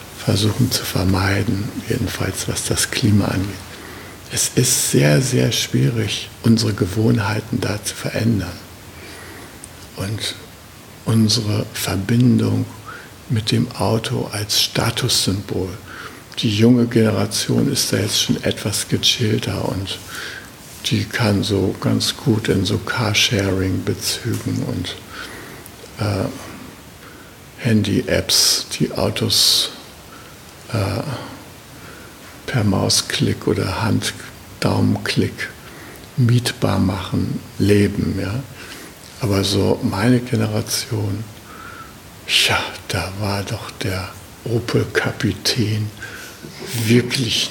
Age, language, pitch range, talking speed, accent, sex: 60-79, German, 100-120 Hz, 90 wpm, German, male